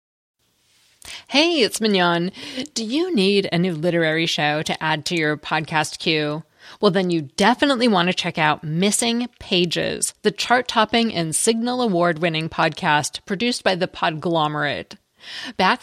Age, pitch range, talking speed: 30-49, 160-215 Hz, 140 wpm